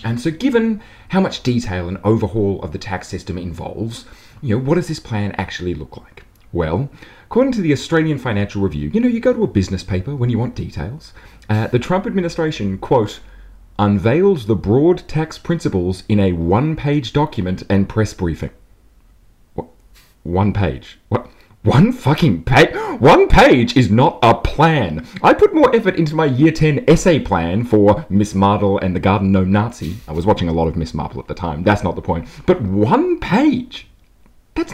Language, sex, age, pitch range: English, male, 30-49, 90-155 Hz